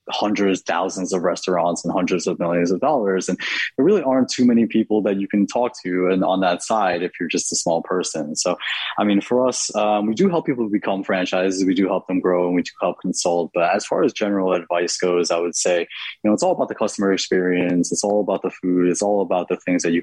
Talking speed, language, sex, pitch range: 250 wpm, English, male, 85-100 Hz